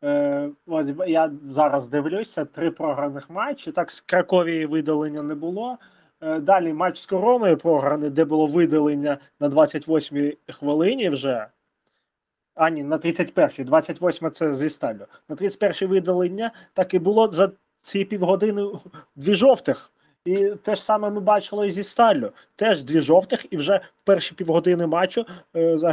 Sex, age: male, 20-39